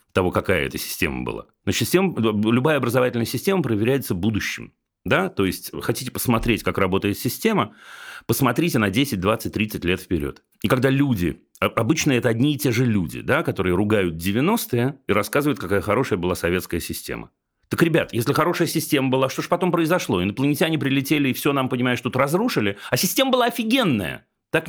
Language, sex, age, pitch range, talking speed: Russian, male, 40-59, 105-135 Hz, 170 wpm